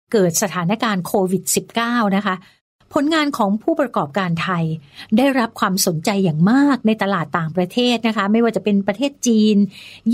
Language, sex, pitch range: Thai, female, 185-235 Hz